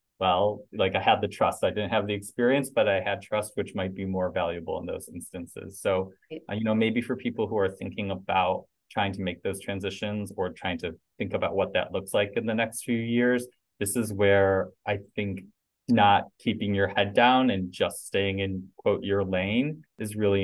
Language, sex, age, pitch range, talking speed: English, male, 20-39, 95-110 Hz, 210 wpm